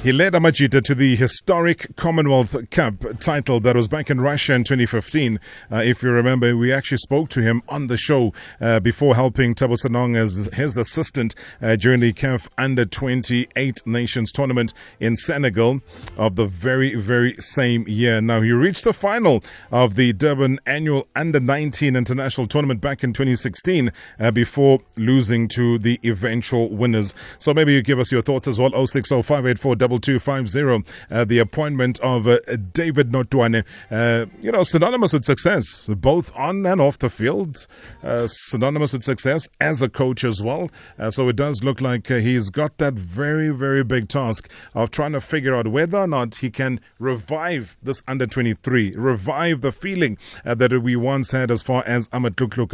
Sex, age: male, 30-49